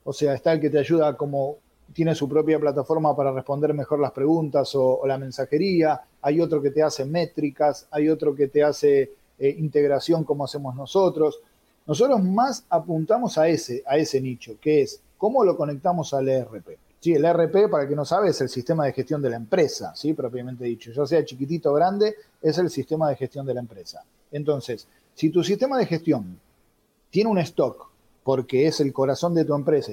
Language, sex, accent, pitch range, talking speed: Spanish, male, Argentinian, 135-170 Hz, 200 wpm